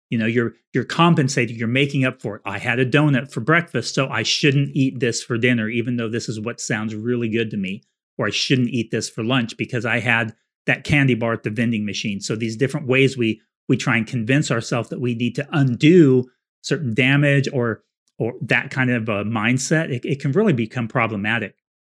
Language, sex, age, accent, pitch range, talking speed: English, male, 30-49, American, 110-135 Hz, 220 wpm